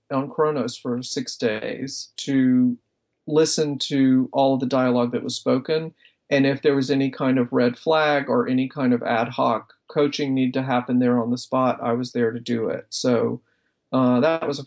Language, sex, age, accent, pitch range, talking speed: English, male, 50-69, American, 125-150 Hz, 200 wpm